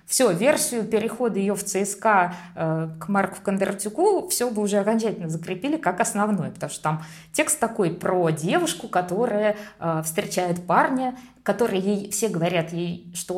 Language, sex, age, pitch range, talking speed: Russian, female, 20-39, 170-215 Hz, 145 wpm